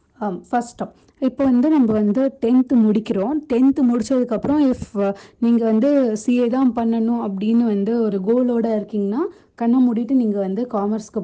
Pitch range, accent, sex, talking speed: 205-255 Hz, native, female, 130 wpm